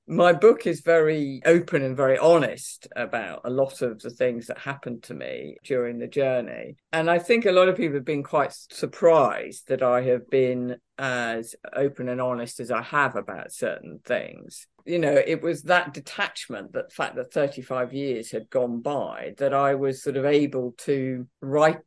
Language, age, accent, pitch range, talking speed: English, 50-69, British, 130-165 Hz, 185 wpm